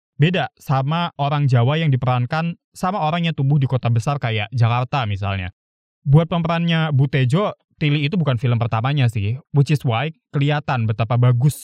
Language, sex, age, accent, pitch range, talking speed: Indonesian, male, 20-39, native, 120-160 Hz, 160 wpm